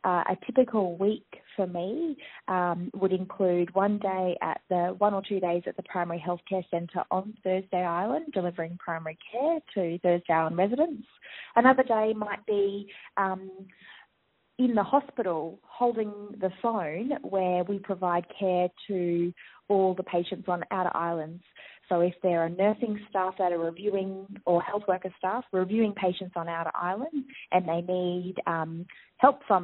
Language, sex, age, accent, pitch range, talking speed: English, female, 20-39, Australian, 175-215 Hz, 160 wpm